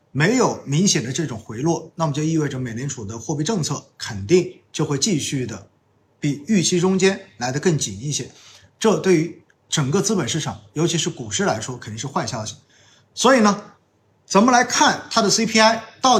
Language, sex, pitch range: Chinese, male, 125-185 Hz